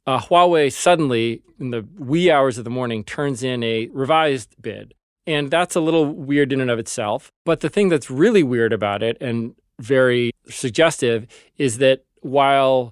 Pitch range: 115-150 Hz